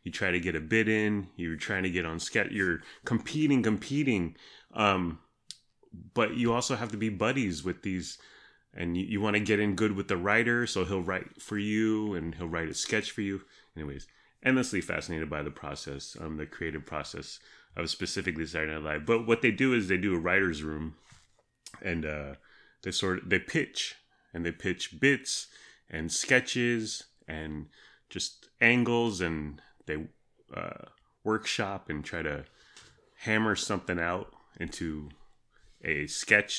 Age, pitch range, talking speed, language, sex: 30-49, 80-110 Hz, 170 wpm, English, male